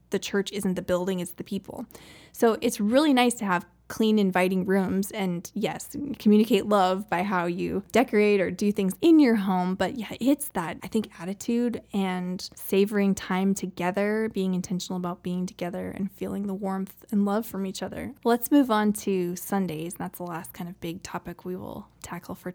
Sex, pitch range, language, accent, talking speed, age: female, 180-210 Hz, English, American, 190 wpm, 20-39